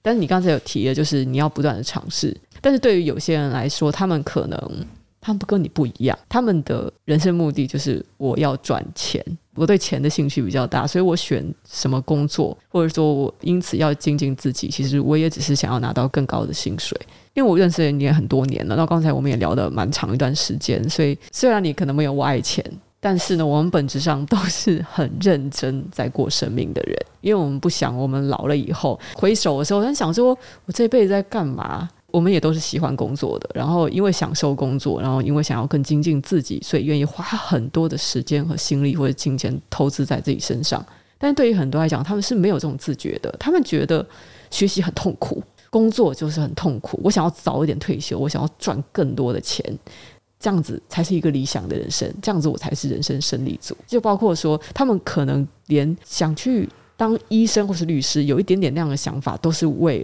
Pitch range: 140-185 Hz